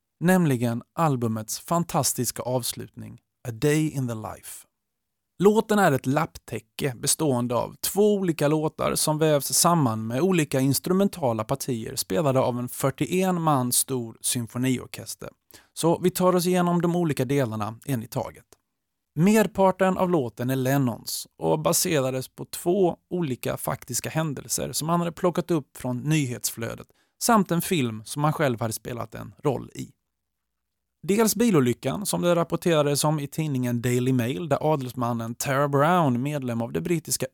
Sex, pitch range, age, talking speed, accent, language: male, 120-170 Hz, 30-49, 145 wpm, native, Swedish